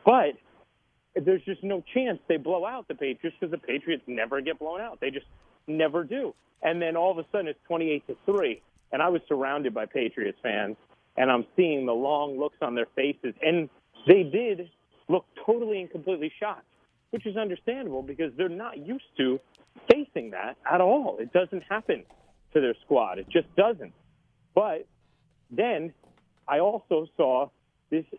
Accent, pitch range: American, 145-190 Hz